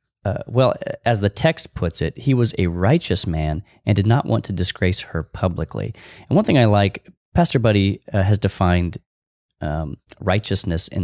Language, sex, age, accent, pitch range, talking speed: English, male, 30-49, American, 90-115 Hz, 180 wpm